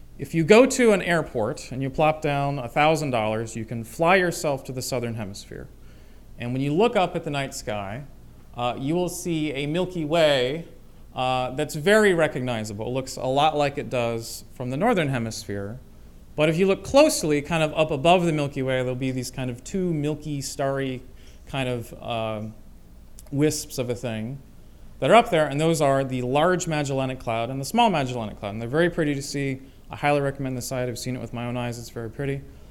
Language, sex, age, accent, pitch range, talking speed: English, male, 30-49, American, 120-160 Hz, 210 wpm